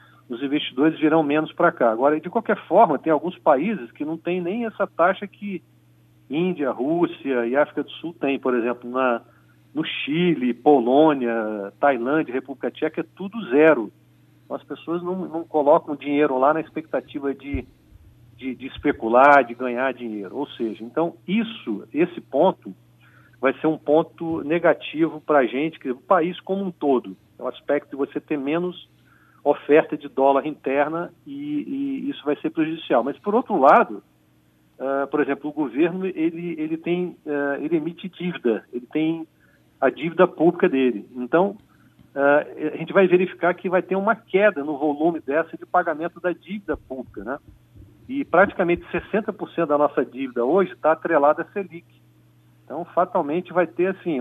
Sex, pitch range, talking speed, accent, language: male, 130-175 Hz, 165 wpm, Brazilian, Portuguese